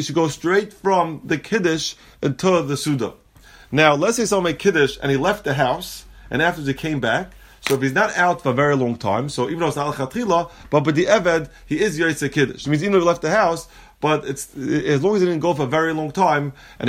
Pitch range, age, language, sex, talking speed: 135-175 Hz, 30-49, English, male, 250 wpm